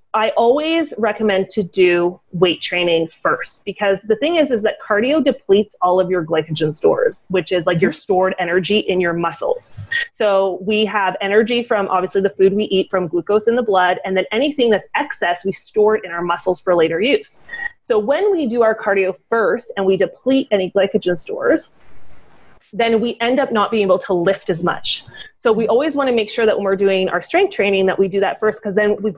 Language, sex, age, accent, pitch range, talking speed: English, female, 30-49, American, 185-235 Hz, 215 wpm